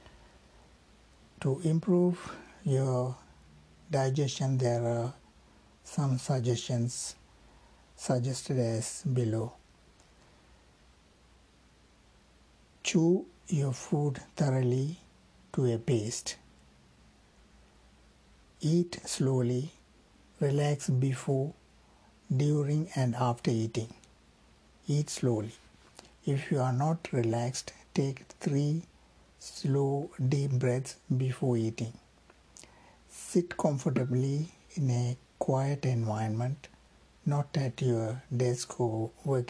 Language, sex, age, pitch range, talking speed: Tamil, male, 60-79, 110-145 Hz, 80 wpm